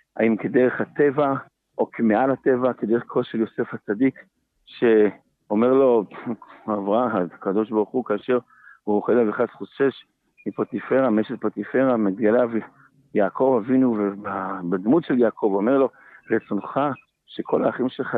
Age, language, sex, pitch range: 50-69, Hebrew, male, 110-135 Hz